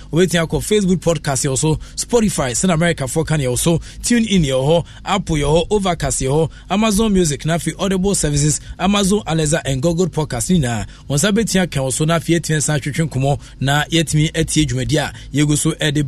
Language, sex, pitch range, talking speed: English, male, 145-185 Hz, 170 wpm